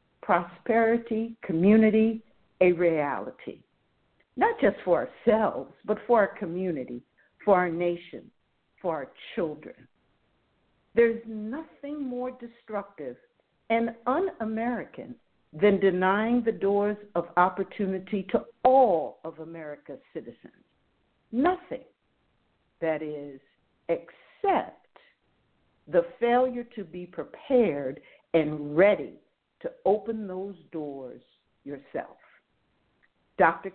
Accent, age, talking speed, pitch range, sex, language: American, 60-79, 90 wpm, 170-240 Hz, female, English